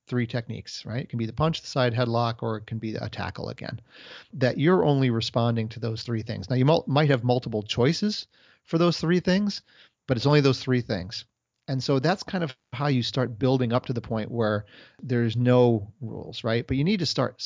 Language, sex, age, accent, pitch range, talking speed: English, male, 40-59, American, 115-135 Hz, 225 wpm